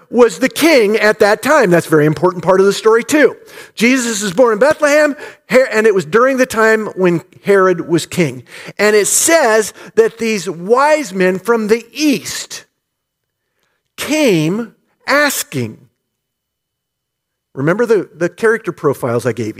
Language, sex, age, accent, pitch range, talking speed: English, male, 50-69, American, 175-255 Hz, 150 wpm